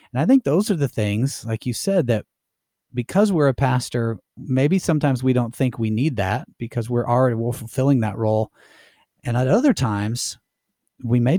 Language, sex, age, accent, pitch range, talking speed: English, male, 30-49, American, 110-140 Hz, 185 wpm